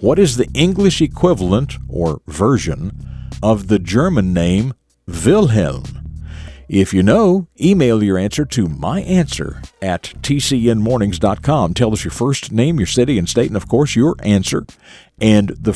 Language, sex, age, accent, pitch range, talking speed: English, male, 50-69, American, 95-130 Hz, 145 wpm